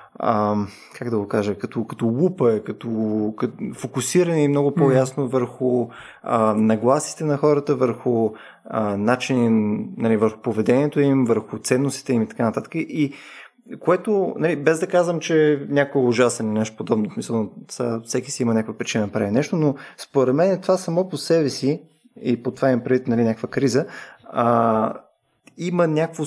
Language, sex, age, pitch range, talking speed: Bulgarian, male, 20-39, 115-150 Hz, 165 wpm